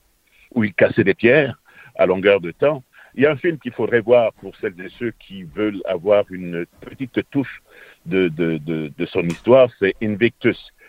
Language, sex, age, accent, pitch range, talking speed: French, male, 60-79, French, 95-150 Hz, 195 wpm